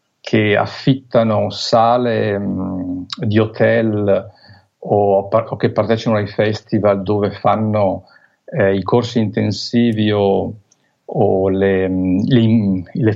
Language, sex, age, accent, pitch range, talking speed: Italian, male, 50-69, native, 100-120 Hz, 105 wpm